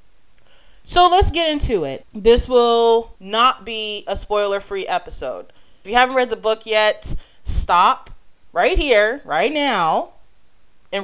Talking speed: 135 wpm